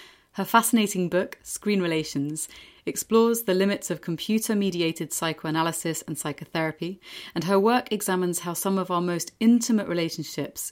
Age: 30-49